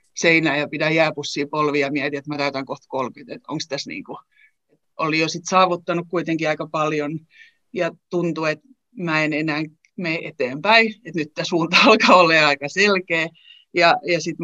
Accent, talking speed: native, 170 wpm